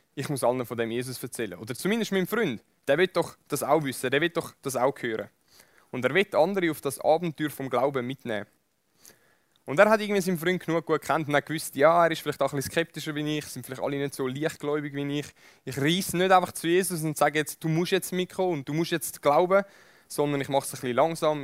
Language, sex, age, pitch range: German, male, 20-39, 130-165 Hz